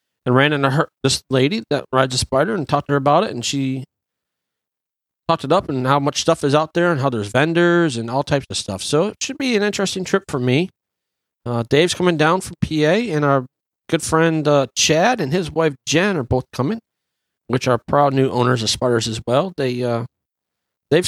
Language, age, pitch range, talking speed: English, 40-59, 125-160 Hz, 220 wpm